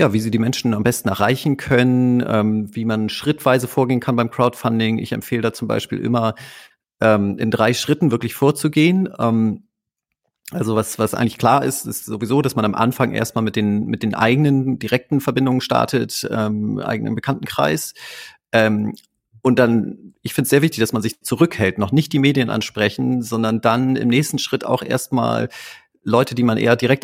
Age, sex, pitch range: 40-59, male, 110-130 Hz